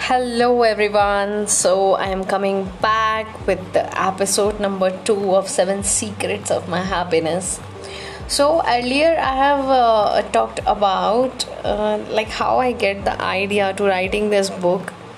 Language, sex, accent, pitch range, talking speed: English, female, Indian, 190-250 Hz, 140 wpm